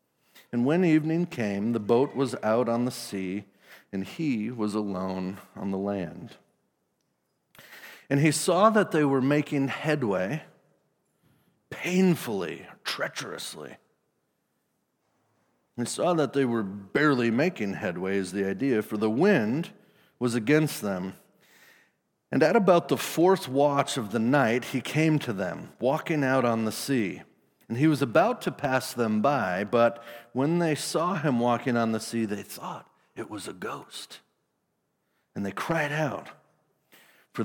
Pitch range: 105-150 Hz